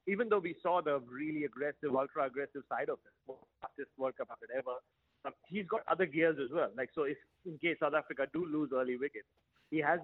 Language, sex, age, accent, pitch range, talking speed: English, male, 30-49, Indian, 135-160 Hz, 205 wpm